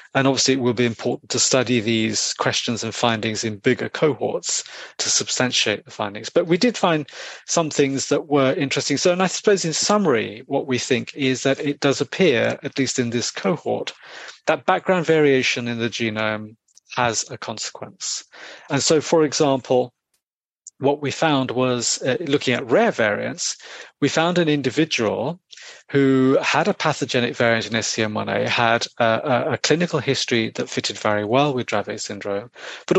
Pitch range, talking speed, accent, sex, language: 115-145 Hz, 170 wpm, British, male, English